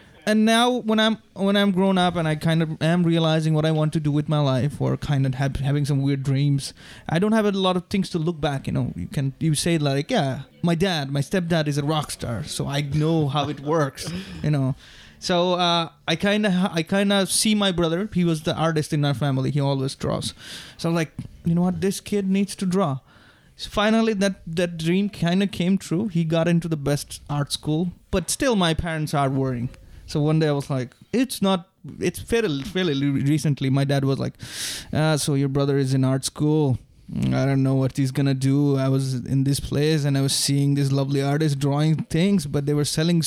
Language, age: English, 20-39